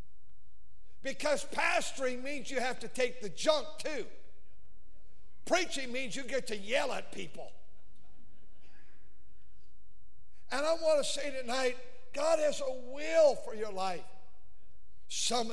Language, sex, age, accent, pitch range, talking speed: English, male, 50-69, American, 210-260 Hz, 125 wpm